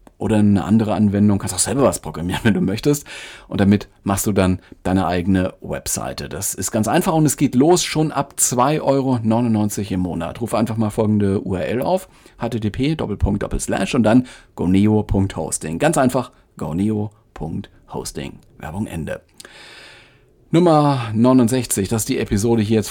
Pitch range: 105-125 Hz